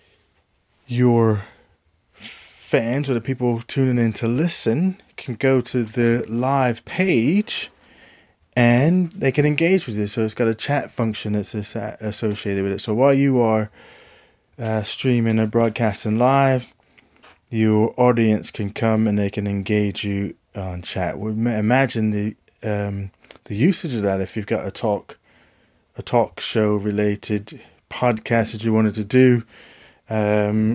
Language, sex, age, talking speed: English, male, 20-39, 150 wpm